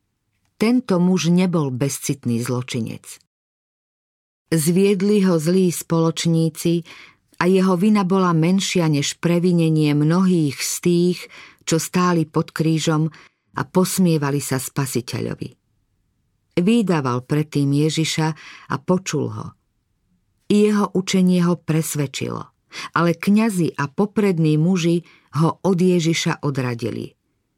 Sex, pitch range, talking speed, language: female, 145-180 Hz, 100 wpm, Slovak